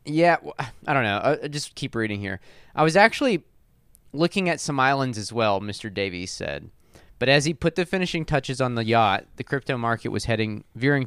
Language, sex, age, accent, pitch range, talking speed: English, male, 20-39, American, 105-135 Hz, 200 wpm